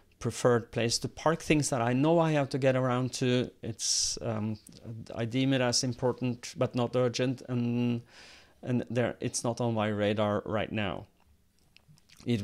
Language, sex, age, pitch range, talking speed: English, male, 30-49, 110-130 Hz, 170 wpm